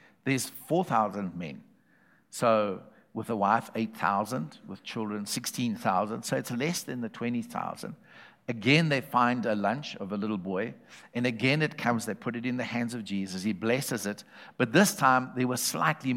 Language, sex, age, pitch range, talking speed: English, male, 60-79, 120-165 Hz, 175 wpm